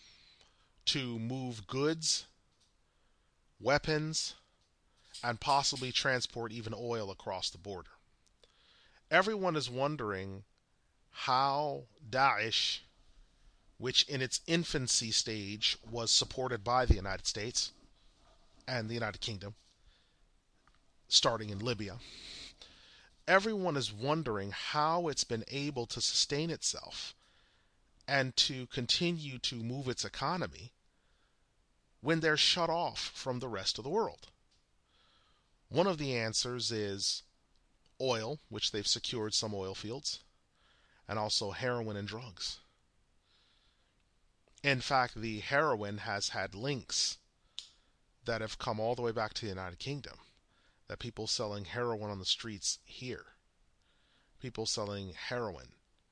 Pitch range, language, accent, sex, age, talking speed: 105-135 Hz, English, American, male, 40-59, 115 wpm